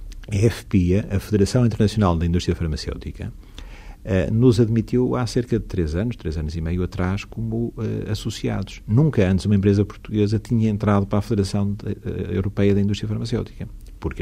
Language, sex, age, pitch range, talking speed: Portuguese, male, 50-69, 80-110 Hz, 155 wpm